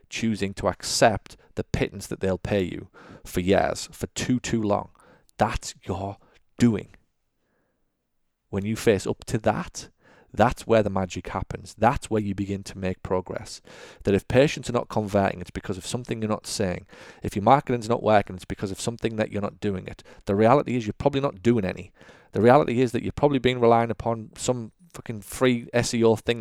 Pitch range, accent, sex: 100-120 Hz, British, male